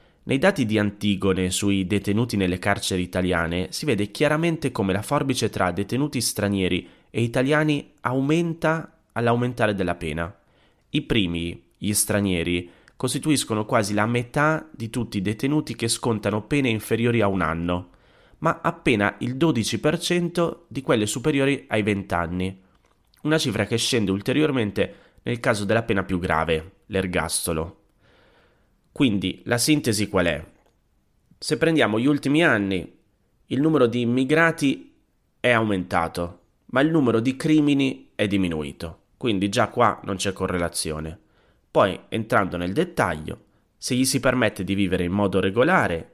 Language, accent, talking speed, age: Italian, native, 140 wpm, 30-49